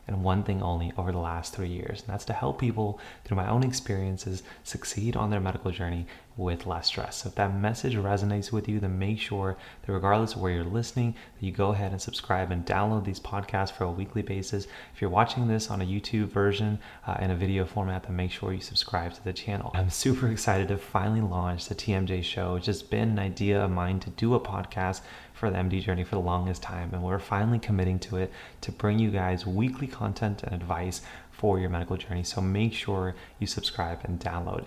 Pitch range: 95-110 Hz